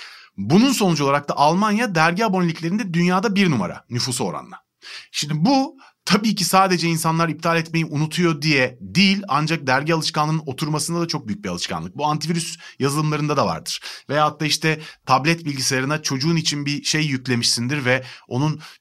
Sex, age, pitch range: male, 30-49, 120-170 Hz